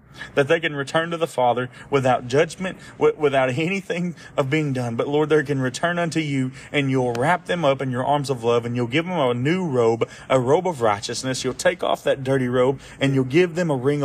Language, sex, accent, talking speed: English, male, American, 230 wpm